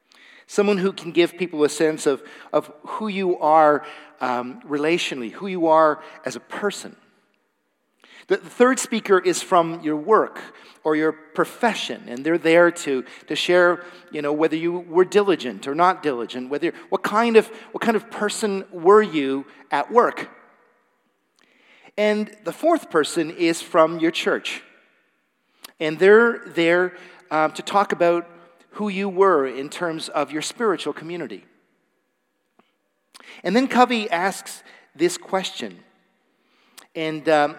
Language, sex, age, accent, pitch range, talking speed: English, male, 50-69, American, 150-200 Hz, 140 wpm